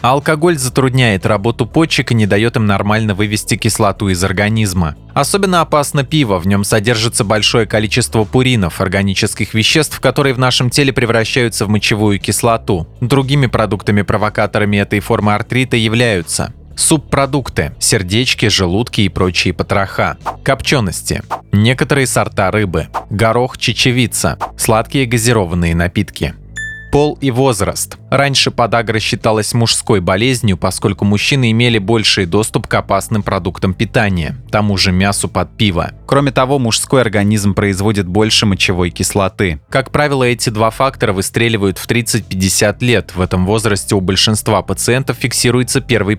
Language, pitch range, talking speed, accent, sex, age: Russian, 100-125 Hz, 130 wpm, native, male, 20-39